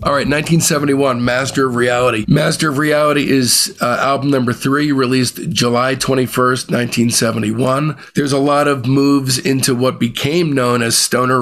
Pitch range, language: 120-140 Hz, English